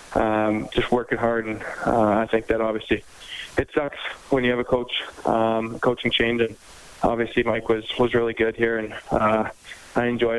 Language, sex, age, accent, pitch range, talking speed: English, male, 20-39, American, 115-130 Hz, 185 wpm